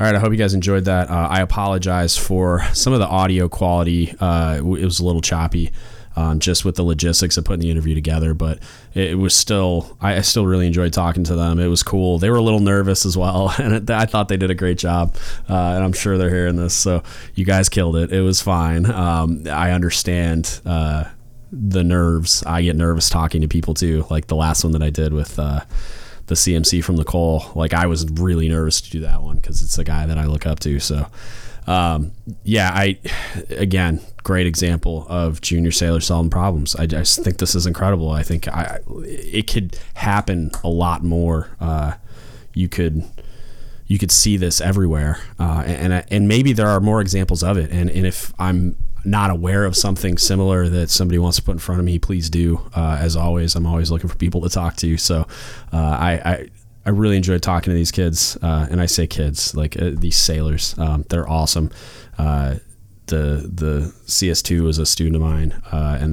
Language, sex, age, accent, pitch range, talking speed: English, male, 20-39, American, 80-95 Hz, 210 wpm